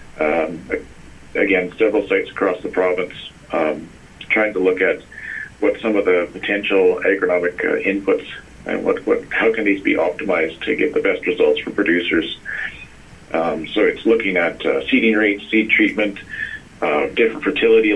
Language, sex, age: English, male, 40-59